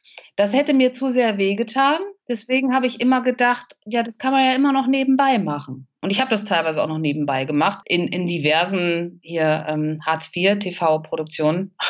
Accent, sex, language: German, female, German